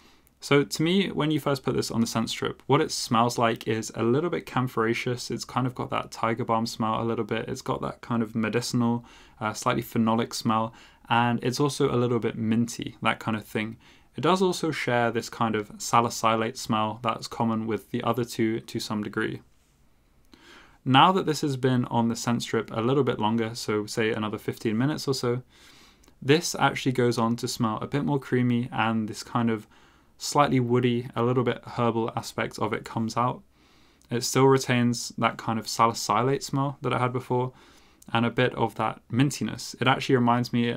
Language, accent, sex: English, British, male